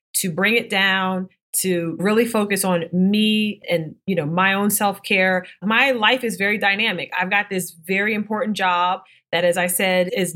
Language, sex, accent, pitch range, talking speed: English, female, American, 170-200 Hz, 185 wpm